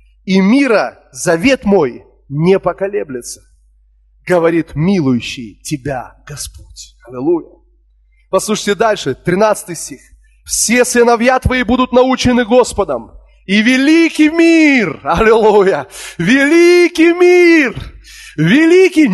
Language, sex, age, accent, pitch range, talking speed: Russian, male, 30-49, native, 200-315 Hz, 90 wpm